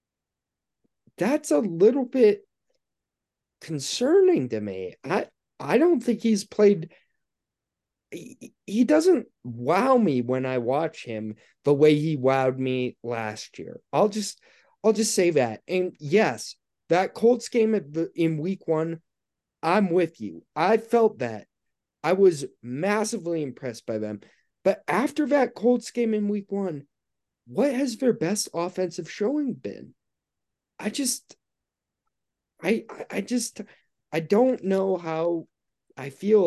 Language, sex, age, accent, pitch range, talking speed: English, male, 30-49, American, 135-215 Hz, 135 wpm